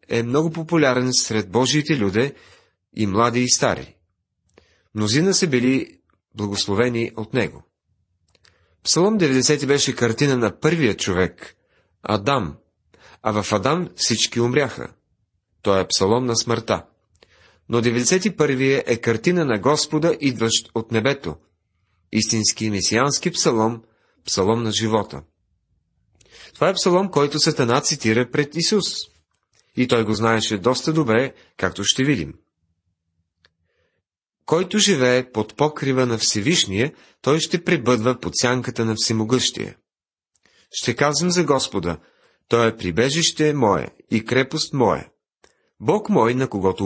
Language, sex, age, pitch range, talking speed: Bulgarian, male, 30-49, 105-145 Hz, 120 wpm